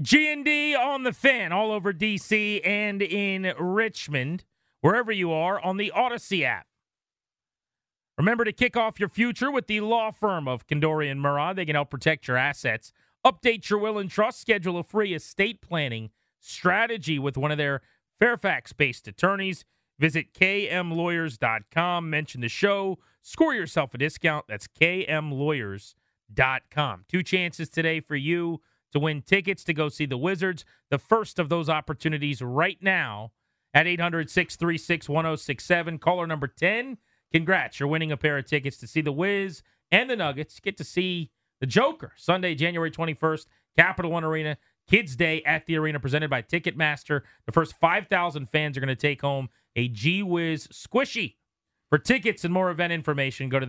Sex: male